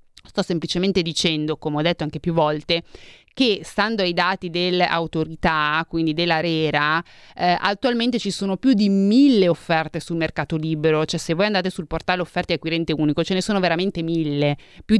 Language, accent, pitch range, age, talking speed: Italian, native, 165-205 Hz, 30-49, 170 wpm